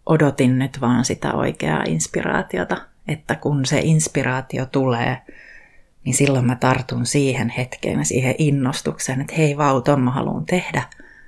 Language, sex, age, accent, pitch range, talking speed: Finnish, female, 30-49, native, 130-160 Hz, 140 wpm